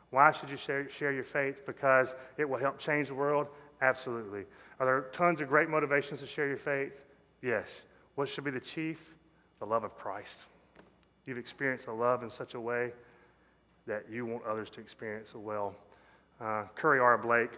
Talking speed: 185 wpm